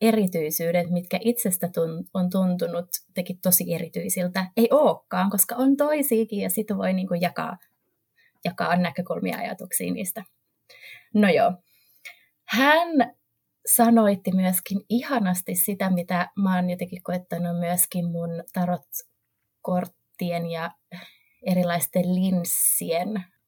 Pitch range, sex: 175-225 Hz, female